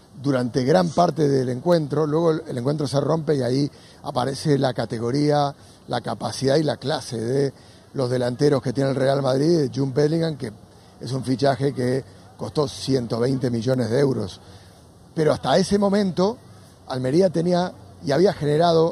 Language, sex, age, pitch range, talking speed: Spanish, male, 40-59, 130-165 Hz, 155 wpm